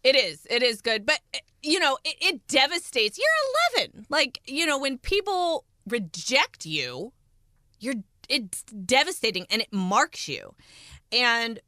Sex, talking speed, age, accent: female, 145 wpm, 30-49, American